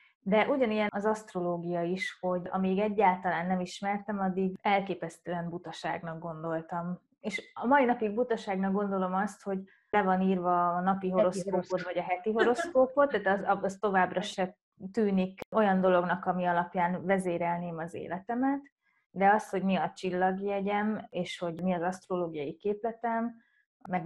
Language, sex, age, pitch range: Hungarian, female, 20-39, 175-210 Hz